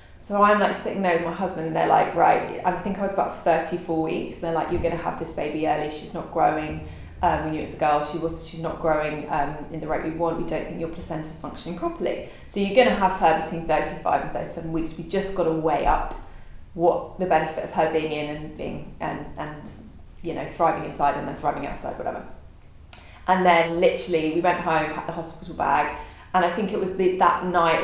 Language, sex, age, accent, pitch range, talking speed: English, female, 20-39, British, 160-175 Hz, 235 wpm